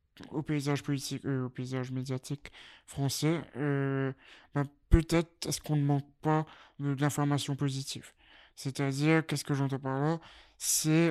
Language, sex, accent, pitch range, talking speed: French, male, French, 130-145 Hz, 145 wpm